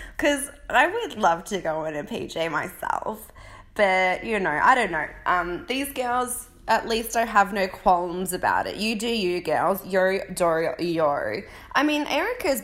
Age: 20-39